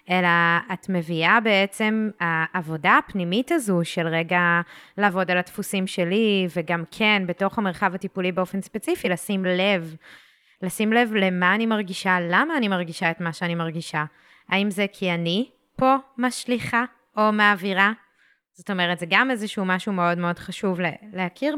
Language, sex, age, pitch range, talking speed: Hebrew, female, 20-39, 175-215 Hz, 145 wpm